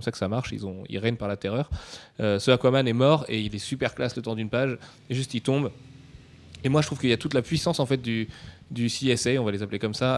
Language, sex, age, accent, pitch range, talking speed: French, male, 20-39, French, 115-140 Hz, 290 wpm